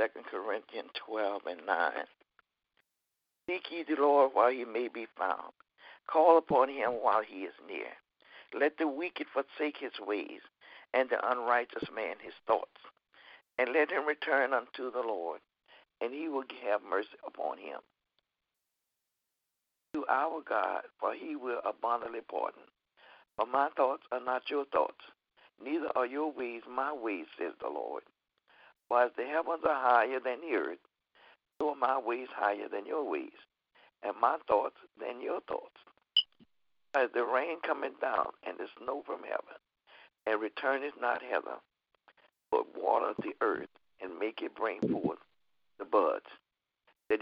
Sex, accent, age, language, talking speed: male, American, 60-79, English, 155 wpm